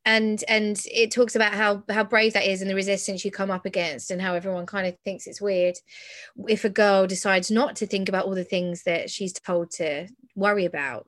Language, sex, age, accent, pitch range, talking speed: English, female, 20-39, British, 180-220 Hz, 225 wpm